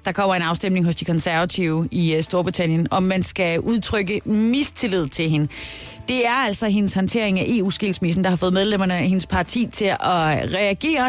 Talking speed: 185 wpm